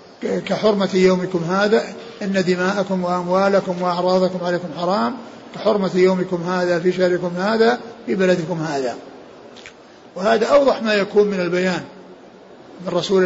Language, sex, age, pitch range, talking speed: Arabic, male, 50-69, 185-210 Hz, 120 wpm